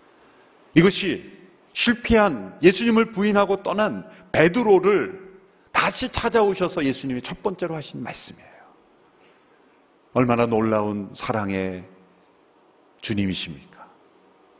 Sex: male